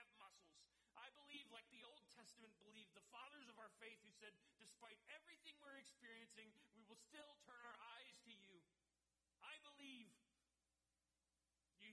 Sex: male